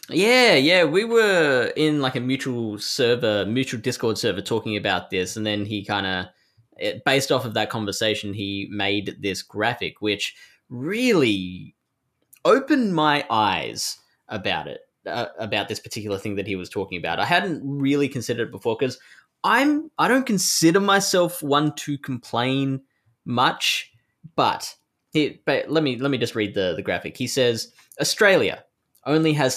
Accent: Australian